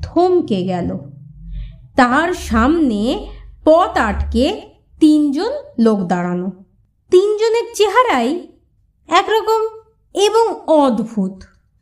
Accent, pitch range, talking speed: native, 245-375 Hz, 70 wpm